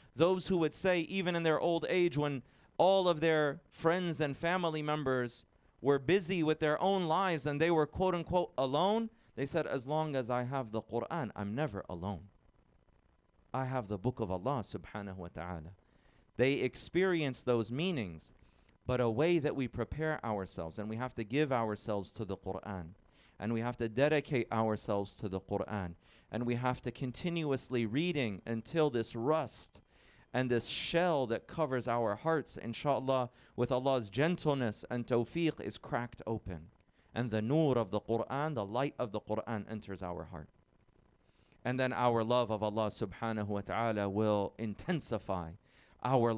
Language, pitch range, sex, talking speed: English, 110-150 Hz, male, 165 wpm